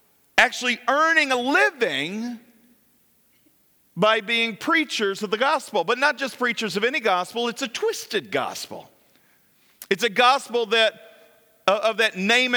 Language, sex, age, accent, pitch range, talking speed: English, male, 40-59, American, 195-245 Hz, 140 wpm